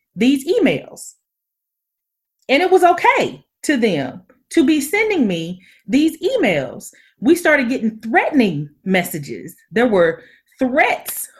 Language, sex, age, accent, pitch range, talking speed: English, female, 30-49, American, 215-315 Hz, 115 wpm